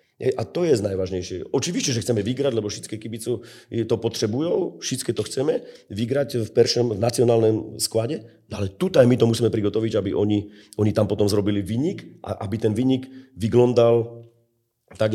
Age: 40-59